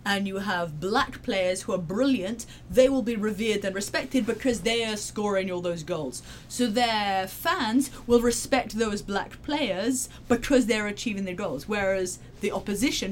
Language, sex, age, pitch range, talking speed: English, female, 30-49, 180-235 Hz, 170 wpm